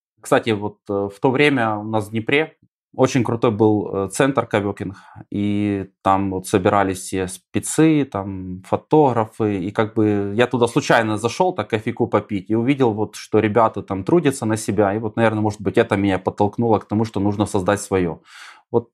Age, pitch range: 20-39, 105-125 Hz